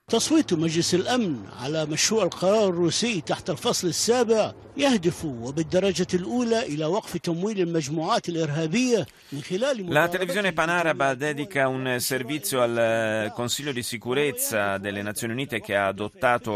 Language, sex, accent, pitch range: Italian, male, native, 100-135 Hz